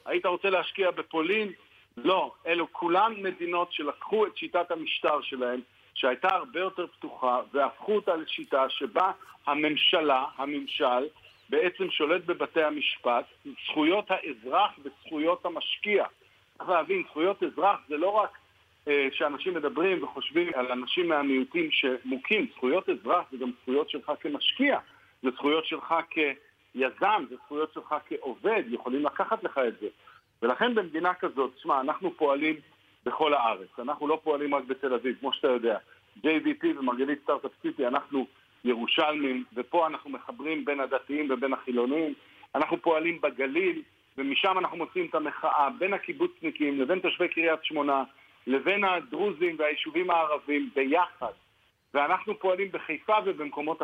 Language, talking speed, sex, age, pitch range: Hebrew, 135 wpm, male, 60-79, 135-190 Hz